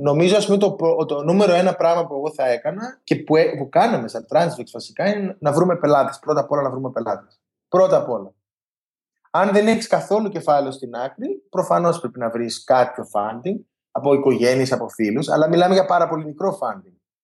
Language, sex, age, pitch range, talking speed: Greek, male, 20-39, 130-170 Hz, 200 wpm